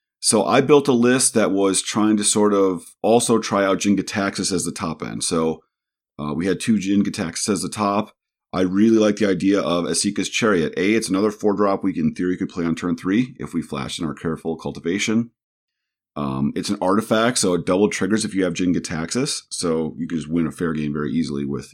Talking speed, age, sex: 225 wpm, 40-59, male